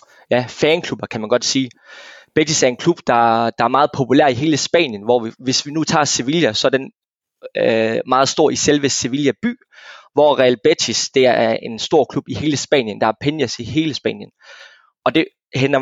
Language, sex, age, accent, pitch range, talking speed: Danish, male, 20-39, native, 120-155 Hz, 205 wpm